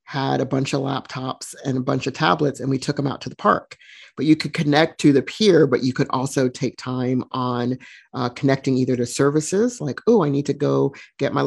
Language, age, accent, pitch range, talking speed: English, 40-59, American, 120-145 Hz, 235 wpm